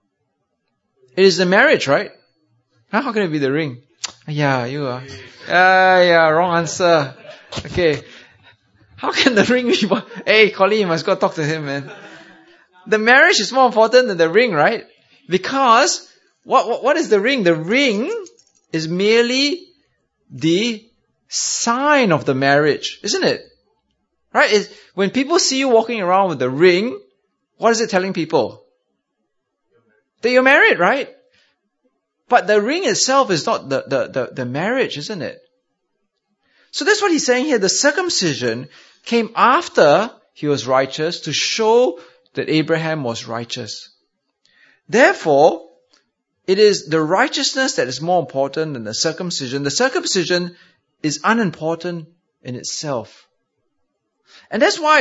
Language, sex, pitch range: English, male, 155-250 Hz